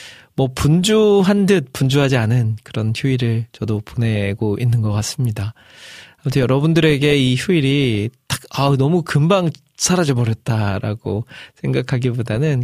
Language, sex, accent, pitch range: Korean, male, native, 115-145 Hz